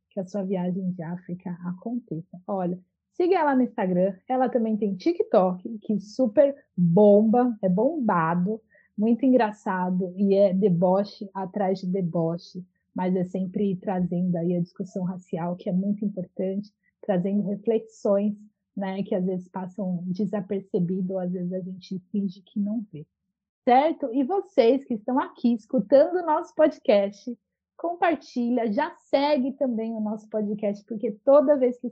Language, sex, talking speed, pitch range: Portuguese, female, 150 wpm, 190-245 Hz